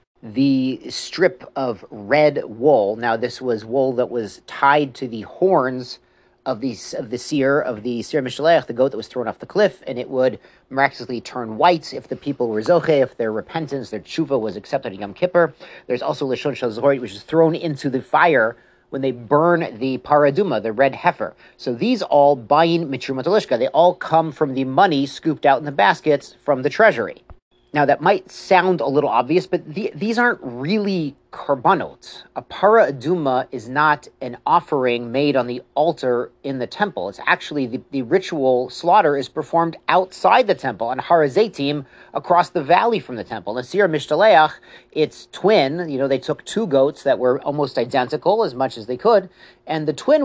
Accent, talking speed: American, 185 wpm